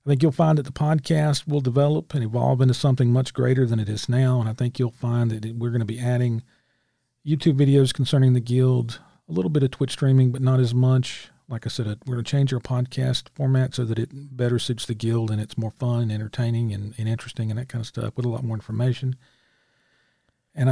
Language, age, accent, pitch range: English, 40-59, American, 115-135 Hz